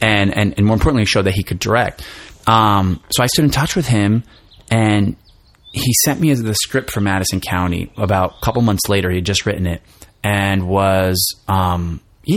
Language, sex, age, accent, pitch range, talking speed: English, male, 30-49, American, 95-110 Hz, 195 wpm